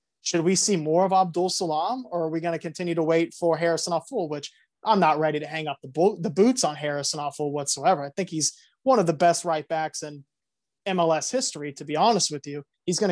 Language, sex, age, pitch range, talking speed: English, male, 20-39, 155-185 Hz, 240 wpm